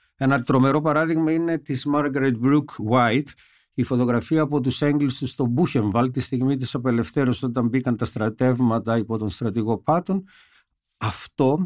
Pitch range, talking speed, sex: 115-155 Hz, 145 wpm, male